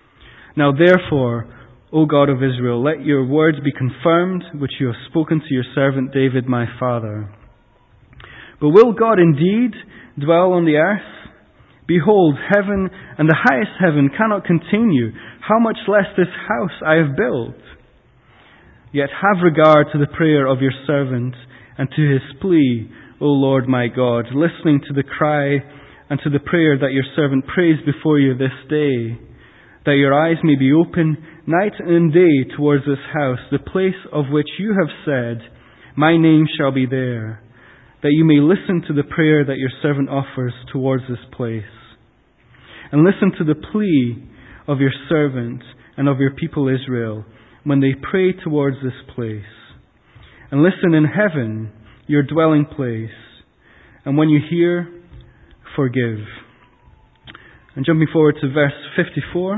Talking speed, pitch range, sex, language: 155 wpm, 125-165 Hz, male, English